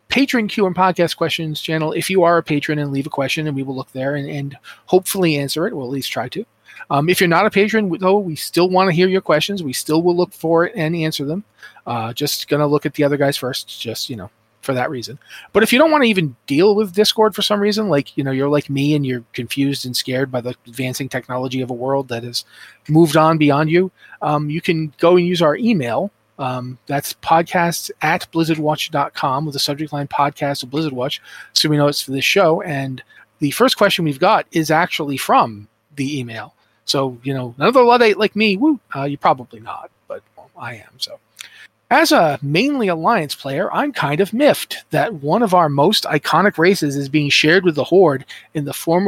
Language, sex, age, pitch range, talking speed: English, male, 30-49, 140-185 Hz, 230 wpm